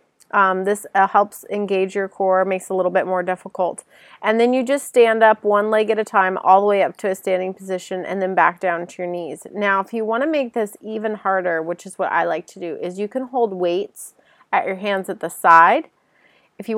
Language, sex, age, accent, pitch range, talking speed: English, female, 30-49, American, 190-220 Hz, 245 wpm